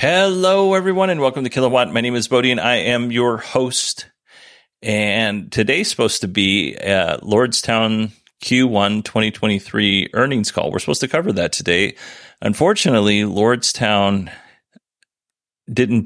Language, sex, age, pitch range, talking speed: English, male, 40-59, 95-120 Hz, 130 wpm